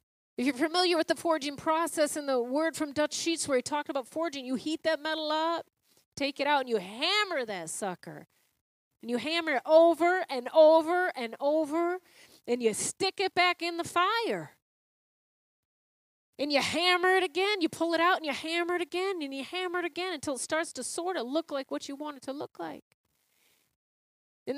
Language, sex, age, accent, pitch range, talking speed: English, female, 40-59, American, 265-340 Hz, 205 wpm